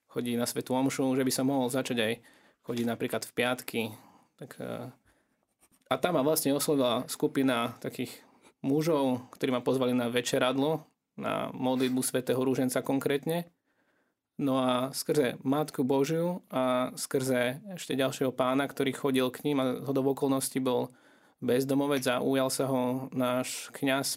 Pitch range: 130-145 Hz